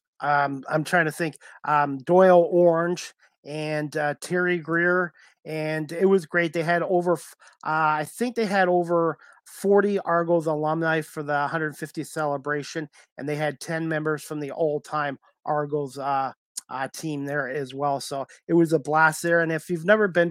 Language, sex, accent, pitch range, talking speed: English, male, American, 145-170 Hz, 170 wpm